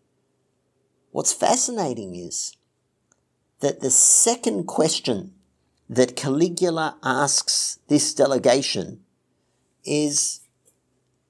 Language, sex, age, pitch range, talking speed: English, male, 50-69, 150-210 Hz, 70 wpm